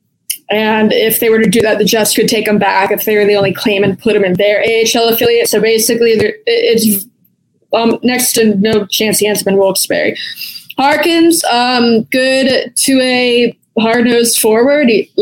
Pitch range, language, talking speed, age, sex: 210-245 Hz, English, 185 wpm, 20-39, female